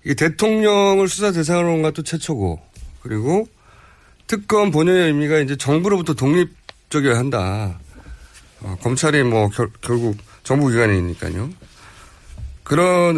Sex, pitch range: male, 100-160 Hz